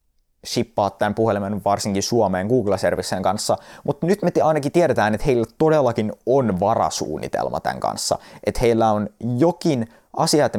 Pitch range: 105-145 Hz